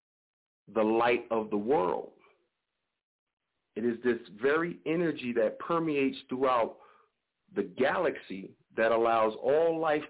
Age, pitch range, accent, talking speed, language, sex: 40-59, 120-165 Hz, American, 115 wpm, English, male